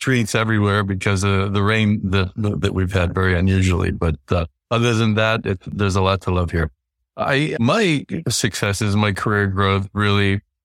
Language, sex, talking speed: English, male, 185 wpm